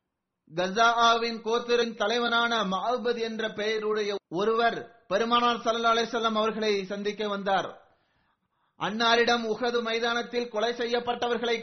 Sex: male